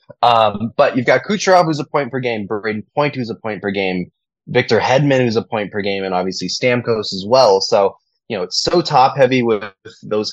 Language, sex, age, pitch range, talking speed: English, male, 20-39, 100-130 Hz, 180 wpm